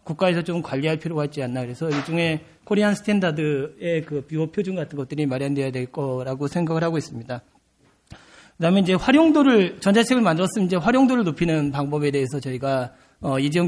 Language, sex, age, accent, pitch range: Korean, male, 40-59, native, 140-185 Hz